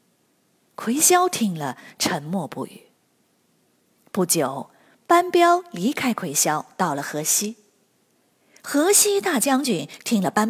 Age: 30-49